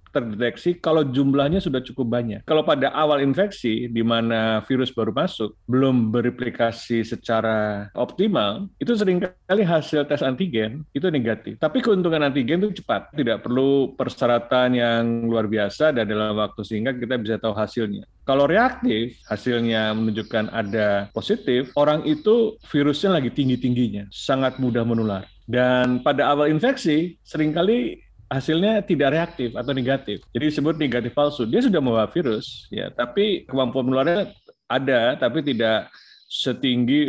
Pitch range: 115-150 Hz